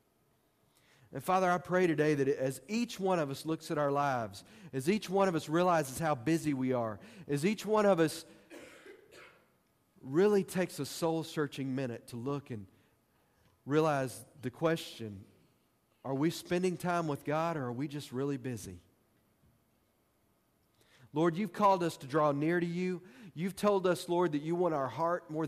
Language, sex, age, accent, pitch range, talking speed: English, male, 40-59, American, 130-175 Hz, 170 wpm